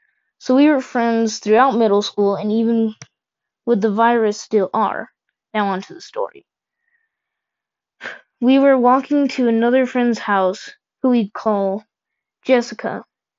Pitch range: 210-270 Hz